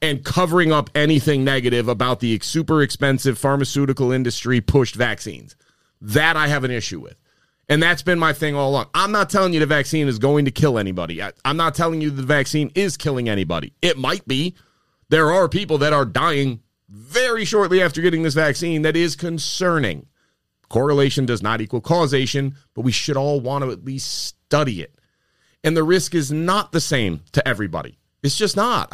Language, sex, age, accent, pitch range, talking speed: English, male, 30-49, American, 135-175 Hz, 190 wpm